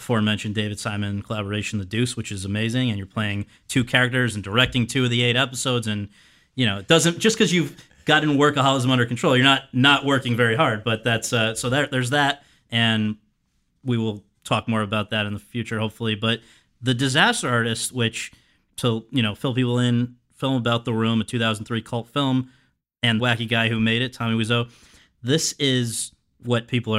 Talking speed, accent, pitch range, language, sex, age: 200 wpm, American, 115-135 Hz, English, male, 30-49